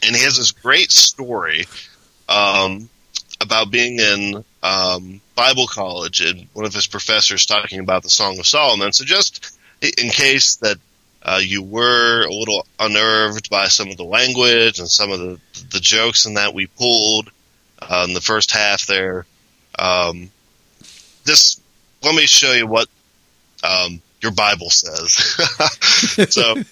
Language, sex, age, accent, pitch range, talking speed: English, male, 20-39, American, 95-120 Hz, 155 wpm